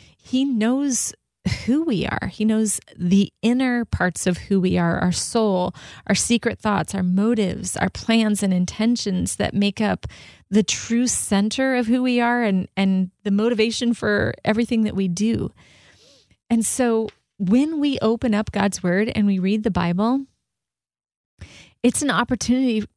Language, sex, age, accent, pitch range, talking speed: English, female, 30-49, American, 190-230 Hz, 155 wpm